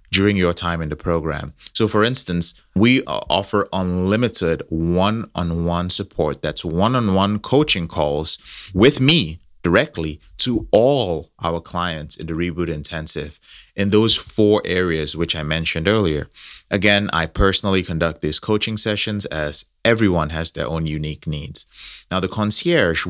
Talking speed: 140 wpm